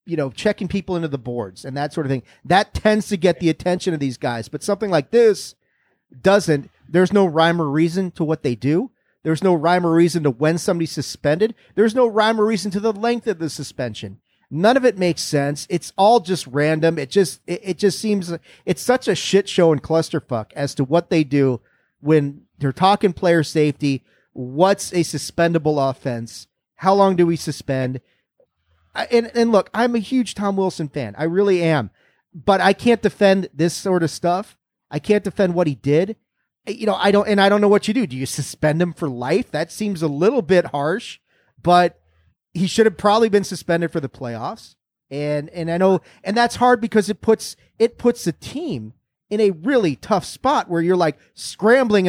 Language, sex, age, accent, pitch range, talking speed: English, male, 40-59, American, 145-200 Hz, 205 wpm